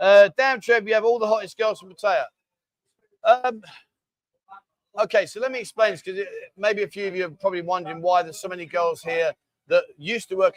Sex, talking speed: male, 210 wpm